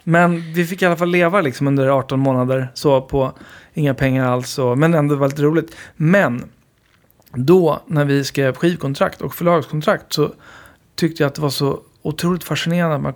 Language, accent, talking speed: Swedish, native, 185 wpm